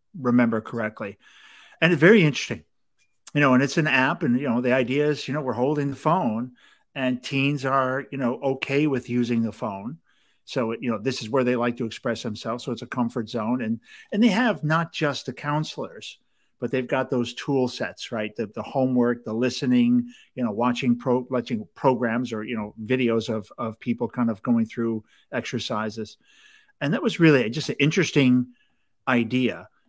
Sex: male